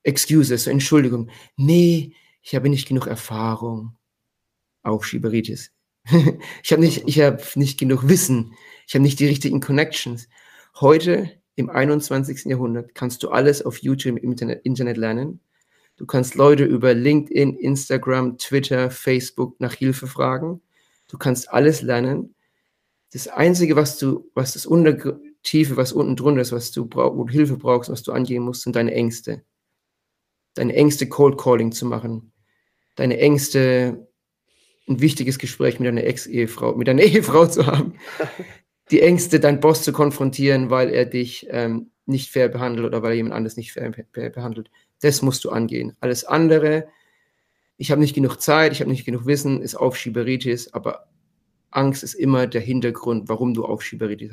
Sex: male